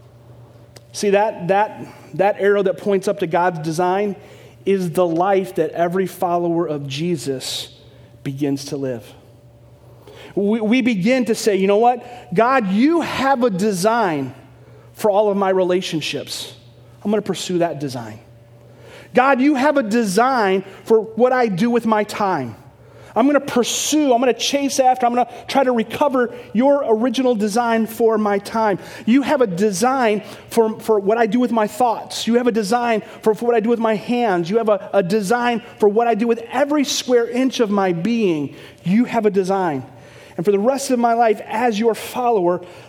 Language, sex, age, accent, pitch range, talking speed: English, male, 40-59, American, 165-235 Hz, 180 wpm